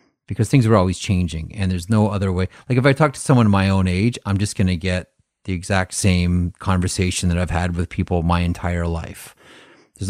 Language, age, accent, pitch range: English, 30-49, American, 90-100 Hz